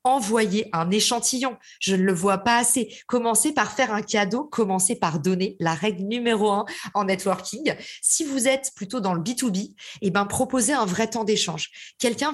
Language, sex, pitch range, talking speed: French, female, 185-235 Hz, 185 wpm